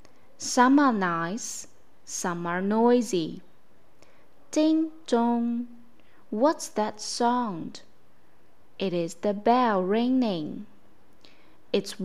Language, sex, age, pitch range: Chinese, female, 20-39, 185-245 Hz